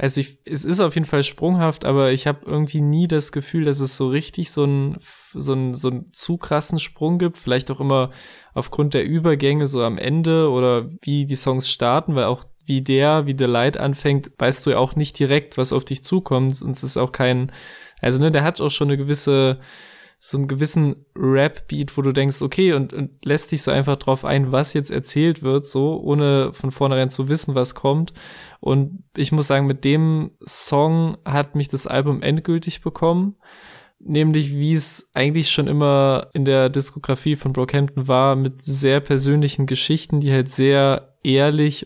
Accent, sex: German, male